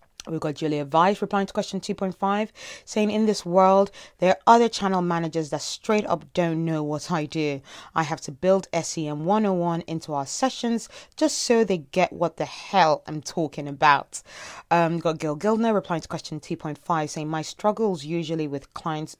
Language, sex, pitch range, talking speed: English, female, 155-195 Hz, 190 wpm